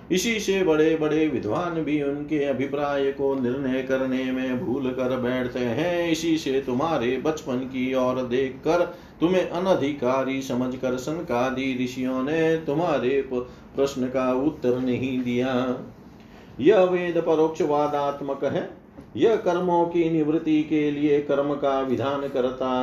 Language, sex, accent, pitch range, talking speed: Hindi, male, native, 130-160 Hz, 130 wpm